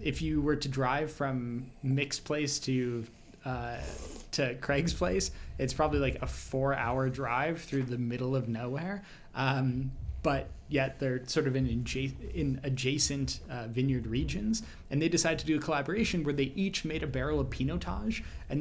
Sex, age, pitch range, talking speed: male, 20-39, 125-150 Hz, 170 wpm